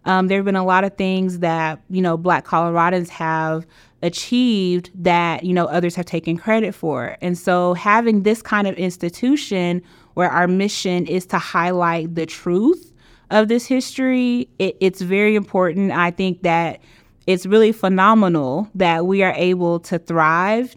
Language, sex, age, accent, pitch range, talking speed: English, female, 20-39, American, 170-210 Hz, 160 wpm